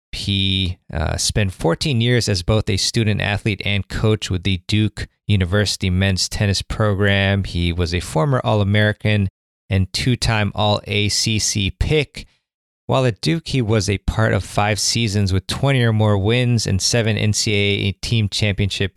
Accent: American